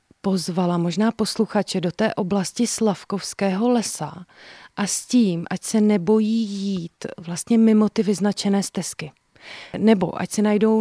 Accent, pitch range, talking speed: native, 175-200 Hz, 135 wpm